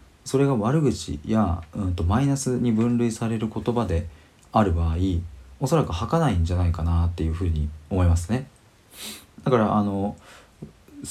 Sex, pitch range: male, 85-115 Hz